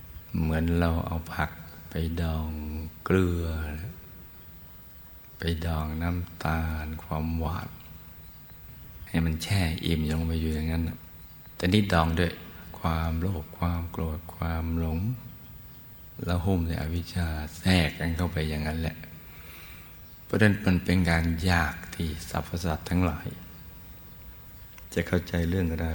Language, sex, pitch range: Thai, male, 80-90 Hz